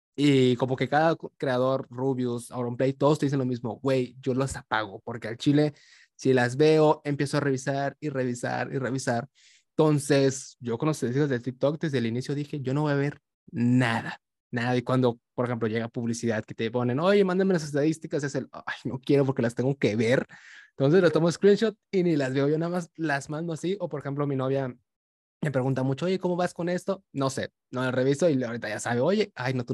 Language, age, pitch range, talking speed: Spanish, 20-39, 125-160 Hz, 220 wpm